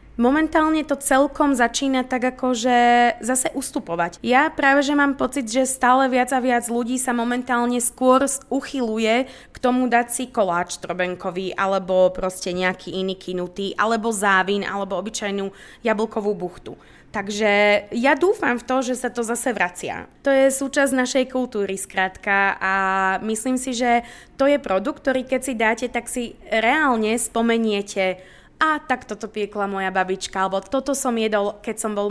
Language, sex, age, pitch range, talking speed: Czech, female, 20-39, 200-255 Hz, 155 wpm